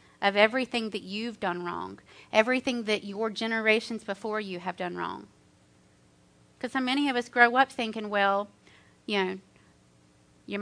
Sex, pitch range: female, 160-225 Hz